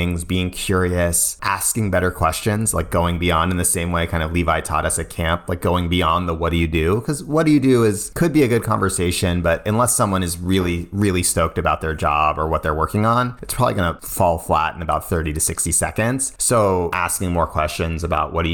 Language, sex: English, male